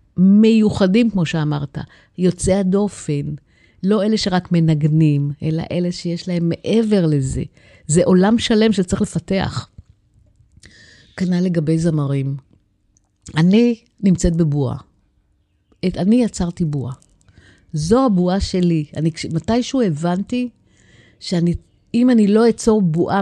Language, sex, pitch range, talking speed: Hebrew, female, 150-195 Hz, 105 wpm